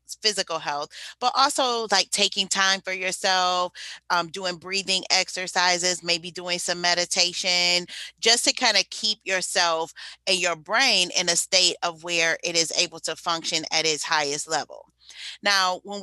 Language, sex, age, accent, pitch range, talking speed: English, female, 30-49, American, 165-200 Hz, 155 wpm